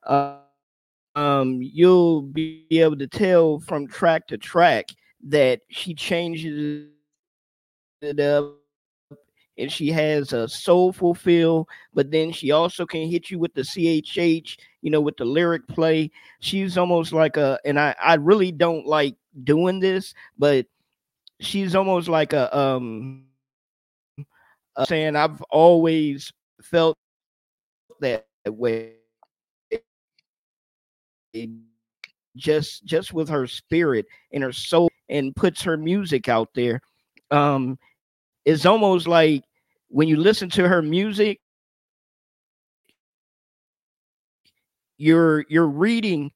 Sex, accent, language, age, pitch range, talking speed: male, American, English, 40-59, 140-170 Hz, 115 wpm